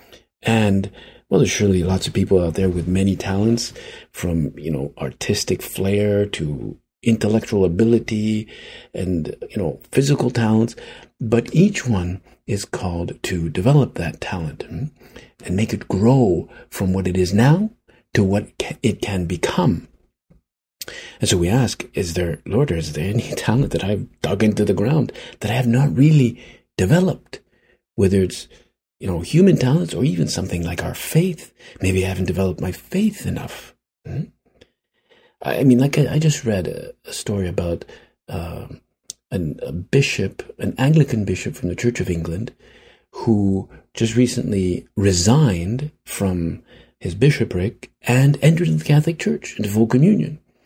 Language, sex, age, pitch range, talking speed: English, male, 50-69, 95-125 Hz, 155 wpm